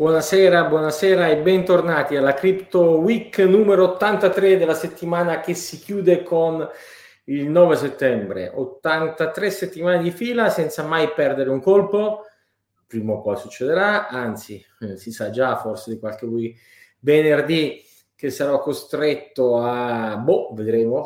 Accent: native